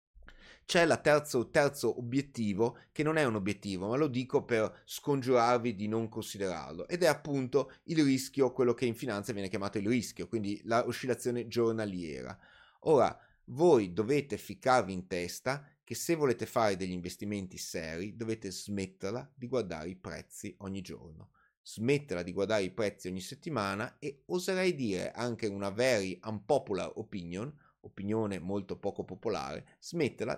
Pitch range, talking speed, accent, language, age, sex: 105-130 Hz, 150 wpm, native, Italian, 30-49, male